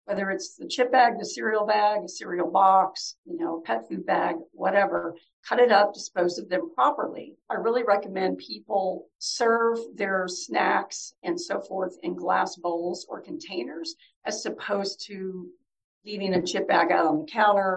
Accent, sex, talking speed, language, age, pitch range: American, female, 170 wpm, English, 50-69, 185-265 Hz